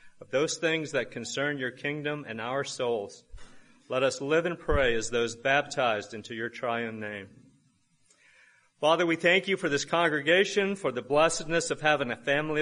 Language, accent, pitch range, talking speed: English, American, 125-160 Hz, 170 wpm